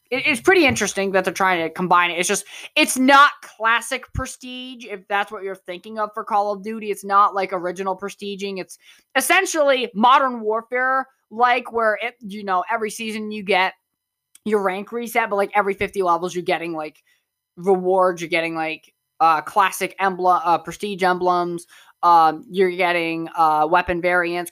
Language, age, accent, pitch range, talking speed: English, 20-39, American, 160-200 Hz, 170 wpm